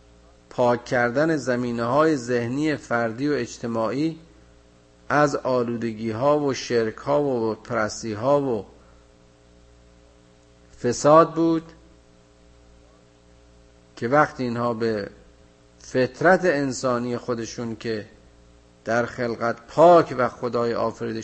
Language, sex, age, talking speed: Persian, male, 50-69, 85 wpm